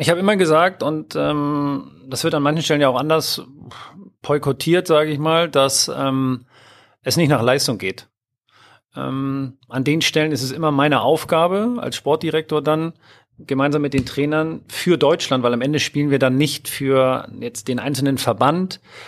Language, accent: German, German